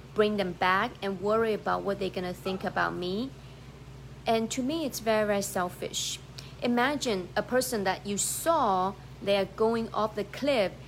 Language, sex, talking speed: English, female, 175 wpm